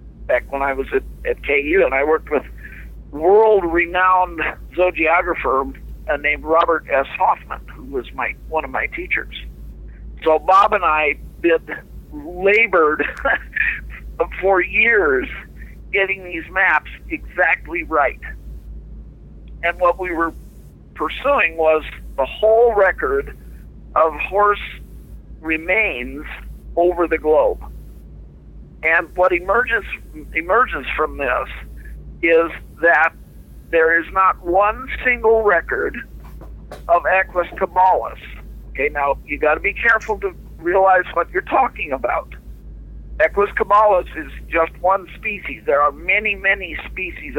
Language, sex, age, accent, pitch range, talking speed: English, male, 50-69, American, 145-205 Hz, 120 wpm